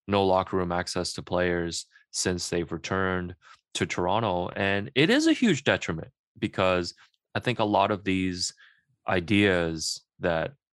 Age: 20-39